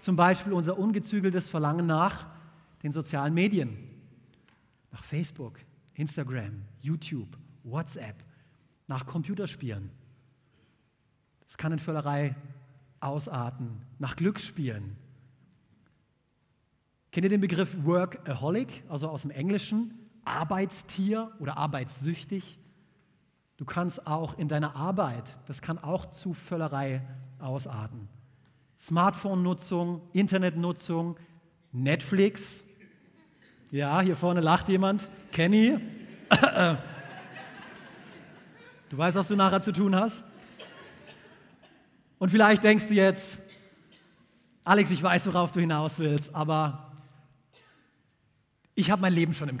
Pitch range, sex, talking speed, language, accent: 140-190 Hz, male, 100 wpm, German, German